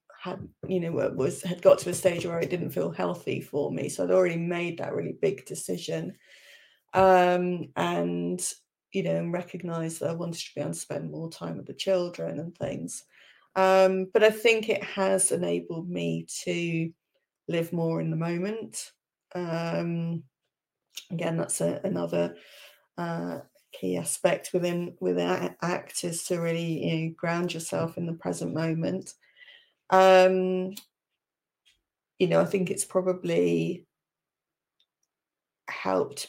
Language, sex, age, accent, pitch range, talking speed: English, female, 30-49, British, 160-190 Hz, 145 wpm